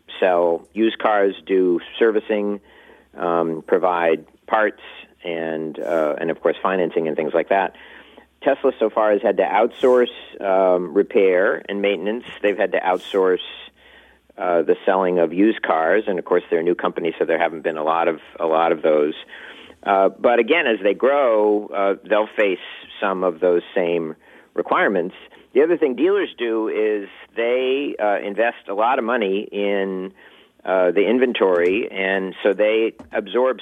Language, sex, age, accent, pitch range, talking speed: English, male, 40-59, American, 90-125 Hz, 165 wpm